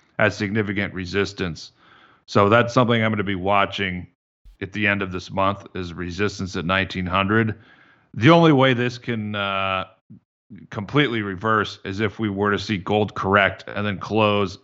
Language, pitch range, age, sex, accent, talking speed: English, 95-110 Hz, 40-59, male, American, 160 wpm